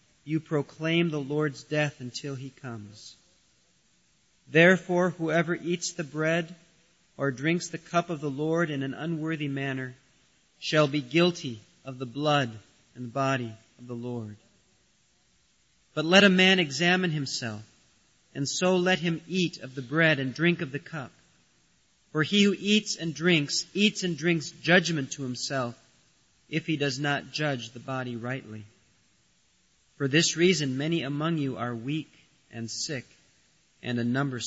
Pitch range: 130-165 Hz